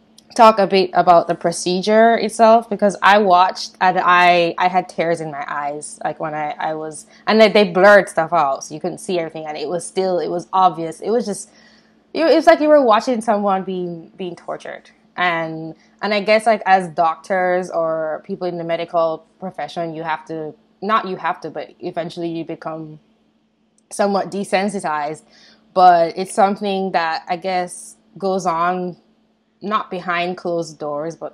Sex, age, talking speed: female, 20-39, 180 wpm